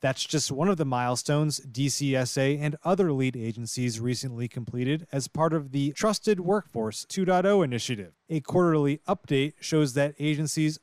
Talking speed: 150 wpm